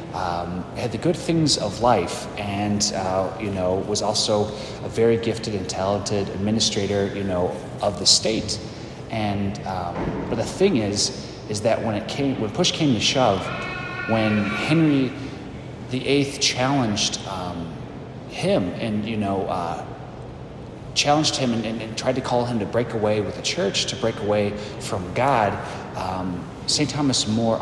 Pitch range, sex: 105-130 Hz, male